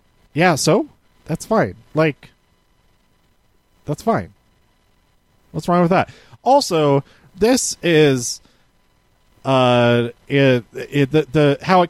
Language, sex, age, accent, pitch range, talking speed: English, male, 30-49, American, 120-175 Hz, 105 wpm